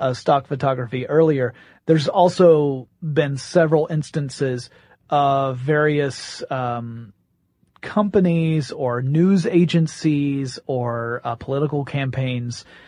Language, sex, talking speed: English, male, 95 wpm